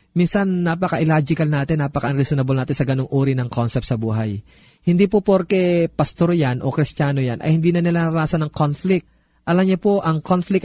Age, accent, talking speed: 20-39, native, 175 wpm